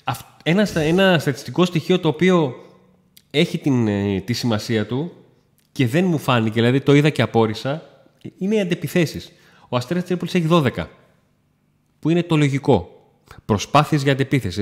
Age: 30-49